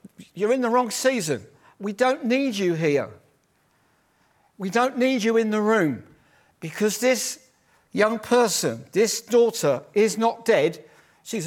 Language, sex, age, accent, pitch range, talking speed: English, male, 50-69, British, 195-255 Hz, 140 wpm